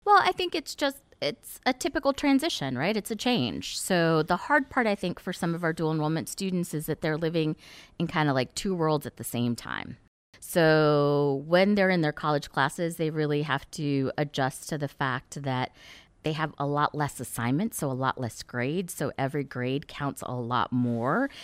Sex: female